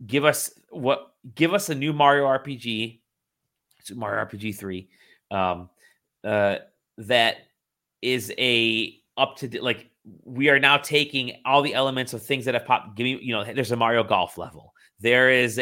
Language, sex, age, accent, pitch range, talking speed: English, male, 30-49, American, 100-125 Hz, 170 wpm